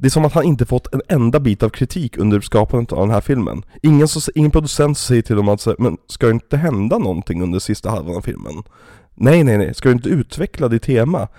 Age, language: 30-49, Swedish